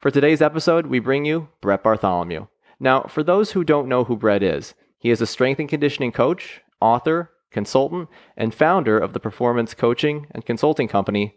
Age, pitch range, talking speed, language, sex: 30-49, 110-145 Hz, 185 wpm, English, male